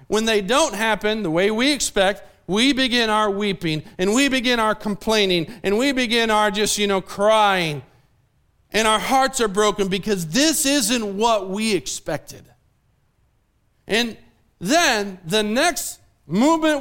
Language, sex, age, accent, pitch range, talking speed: English, male, 40-59, American, 150-230 Hz, 145 wpm